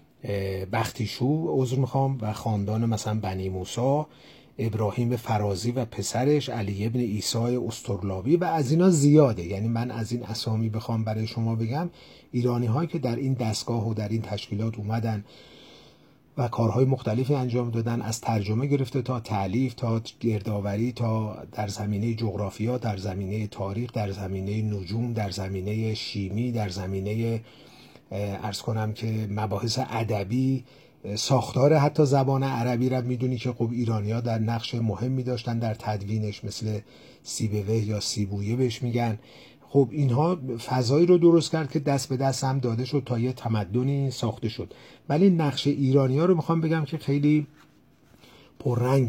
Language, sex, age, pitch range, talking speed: Persian, male, 40-59, 110-130 Hz, 145 wpm